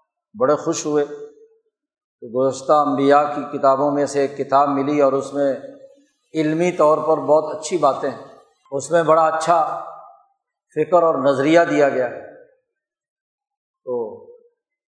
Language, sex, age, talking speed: Urdu, male, 50-69, 135 wpm